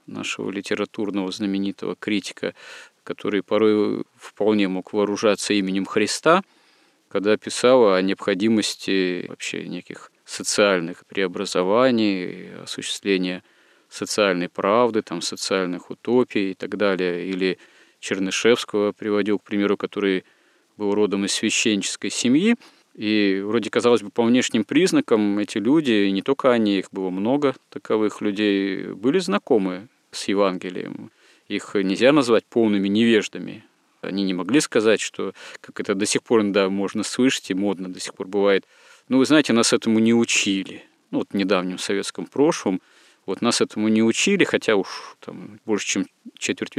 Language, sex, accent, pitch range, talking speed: Russian, male, native, 95-110 Hz, 140 wpm